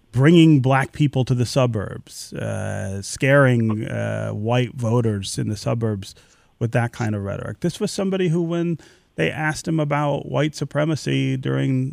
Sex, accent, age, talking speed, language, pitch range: male, American, 30-49, 155 wpm, English, 115-155 Hz